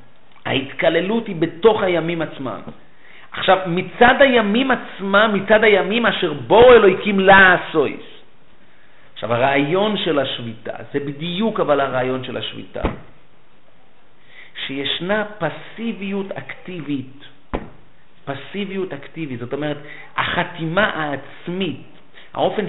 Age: 50-69